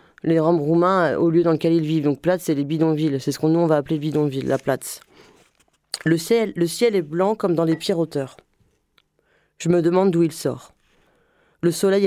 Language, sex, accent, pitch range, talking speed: French, female, French, 155-190 Hz, 220 wpm